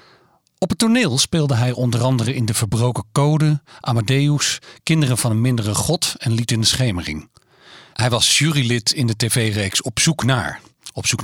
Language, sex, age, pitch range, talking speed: Dutch, male, 40-59, 110-145 Hz, 175 wpm